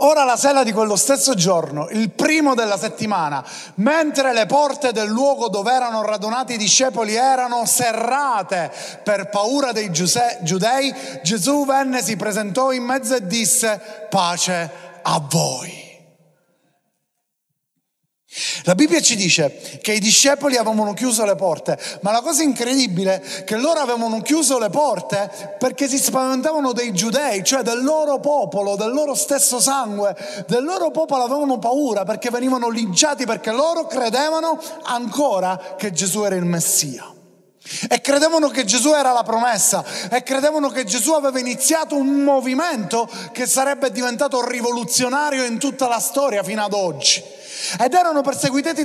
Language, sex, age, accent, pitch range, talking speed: Italian, male, 30-49, native, 215-285 Hz, 145 wpm